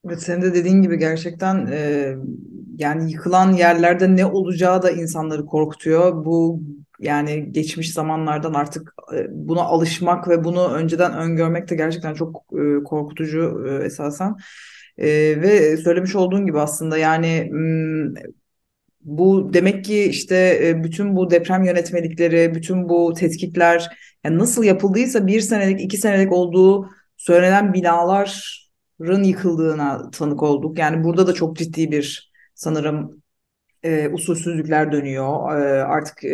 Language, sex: Turkish, female